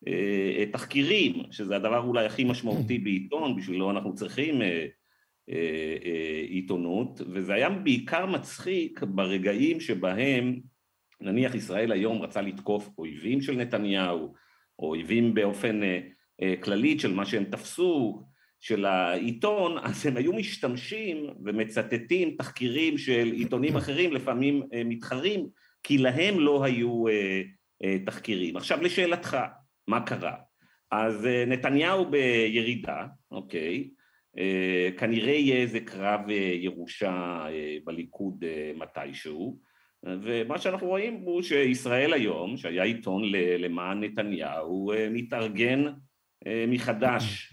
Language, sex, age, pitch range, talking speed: Hebrew, male, 50-69, 95-125 Hz, 100 wpm